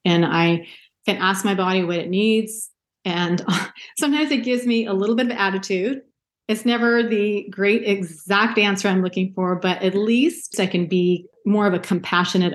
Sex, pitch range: female, 180-220 Hz